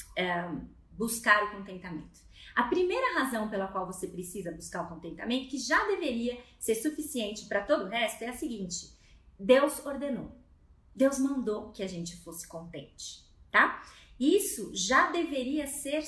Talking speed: 145 wpm